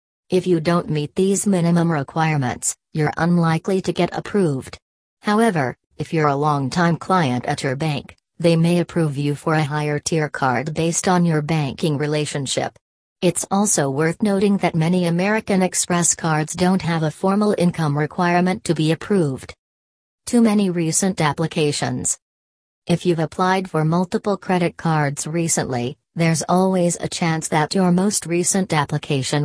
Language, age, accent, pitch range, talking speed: English, 40-59, American, 150-180 Hz, 150 wpm